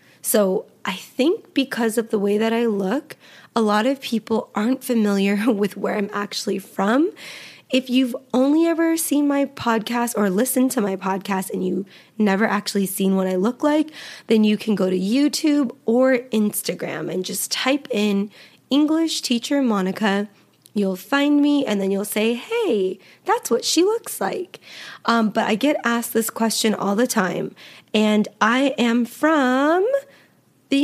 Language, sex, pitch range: English, female, 200-265 Hz